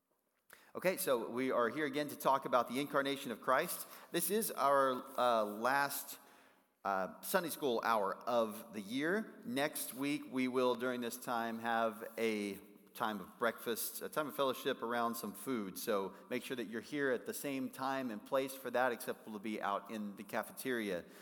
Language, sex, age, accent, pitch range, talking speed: English, male, 40-59, American, 125-160 Hz, 185 wpm